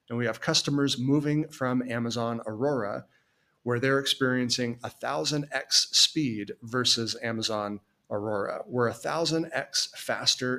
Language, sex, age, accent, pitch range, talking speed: English, male, 30-49, American, 115-140 Hz, 110 wpm